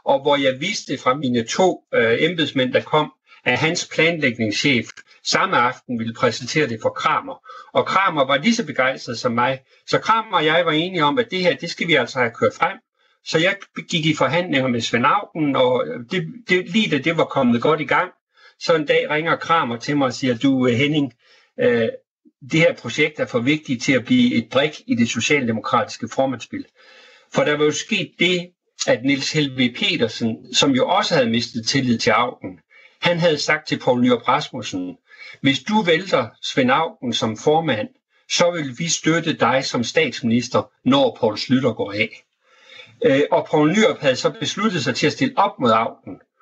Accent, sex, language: native, male, Danish